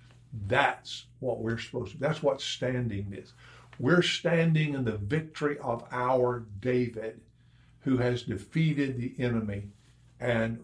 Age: 60-79